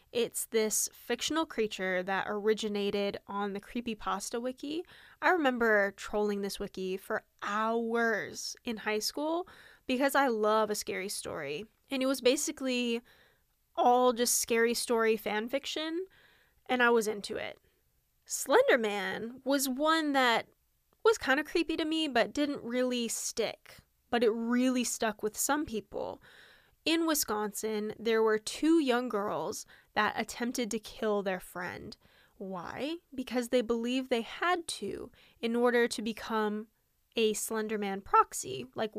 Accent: American